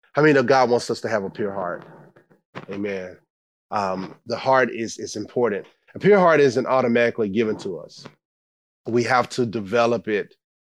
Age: 30-49